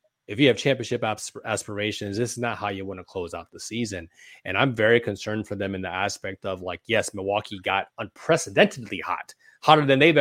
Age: 20-39